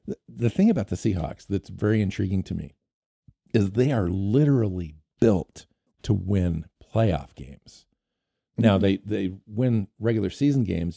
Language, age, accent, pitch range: English, 50-69, American, 90-120 Hz